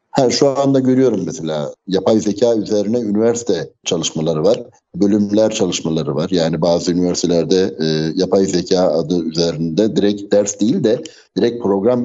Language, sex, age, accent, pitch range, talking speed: Turkish, male, 60-79, native, 90-130 Hz, 140 wpm